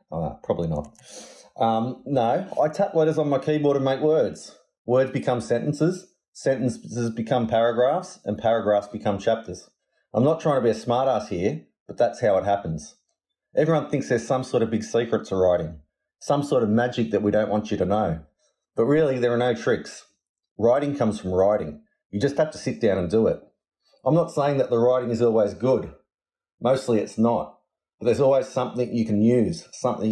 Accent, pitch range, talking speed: Australian, 110-135 Hz, 190 wpm